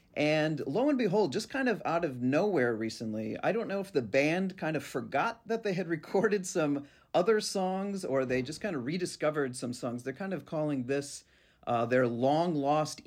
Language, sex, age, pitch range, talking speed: English, male, 40-59, 120-170 Hz, 200 wpm